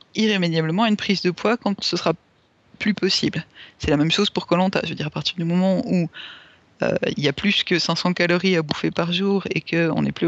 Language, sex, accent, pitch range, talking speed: French, female, French, 160-200 Hz, 235 wpm